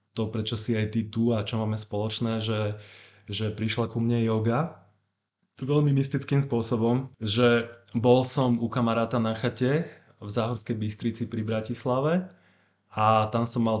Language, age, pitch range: Slovak, 20-39, 105-120 Hz